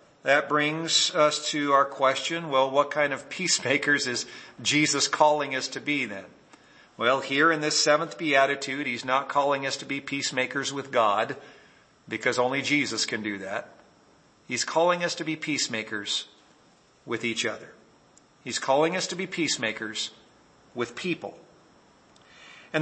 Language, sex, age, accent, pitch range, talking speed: English, male, 50-69, American, 135-180 Hz, 150 wpm